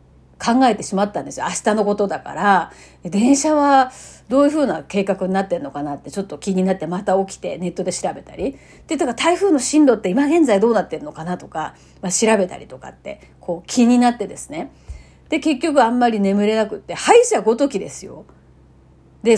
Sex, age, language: female, 40-59, Japanese